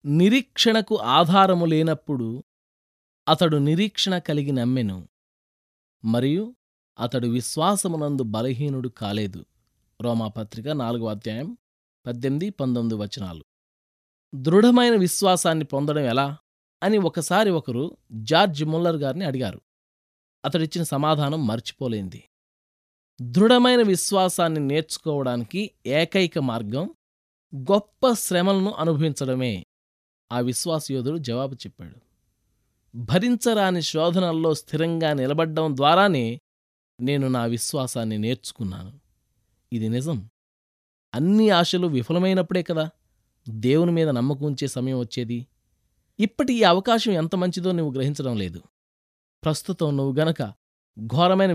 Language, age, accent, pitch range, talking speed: Telugu, 20-39, native, 115-180 Hz, 85 wpm